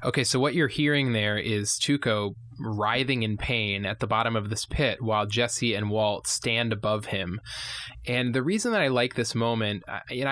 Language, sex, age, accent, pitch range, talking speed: English, male, 20-39, American, 110-125 Hz, 190 wpm